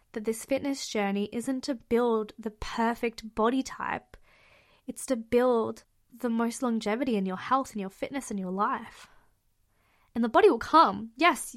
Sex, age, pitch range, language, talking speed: female, 20-39, 220-265 Hz, English, 165 wpm